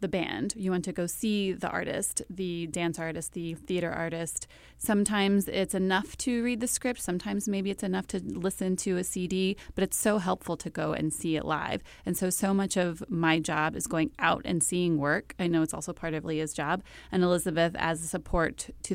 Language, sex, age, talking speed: English, female, 30-49, 215 wpm